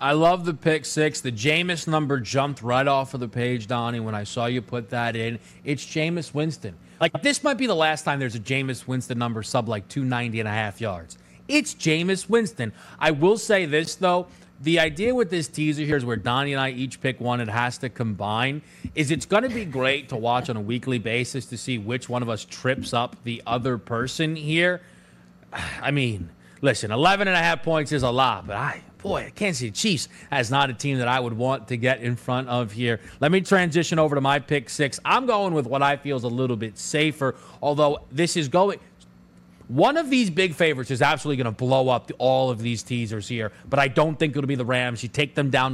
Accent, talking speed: American, 235 wpm